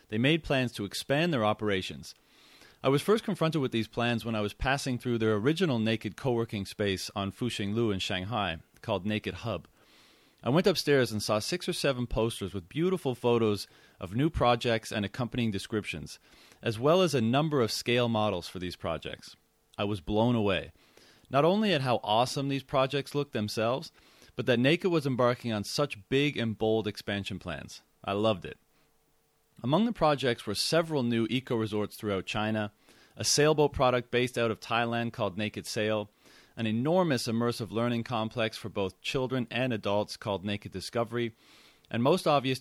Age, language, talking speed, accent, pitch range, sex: 30-49, English, 175 wpm, American, 105-130 Hz, male